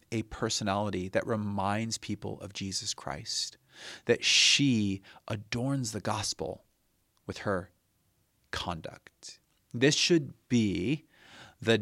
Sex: male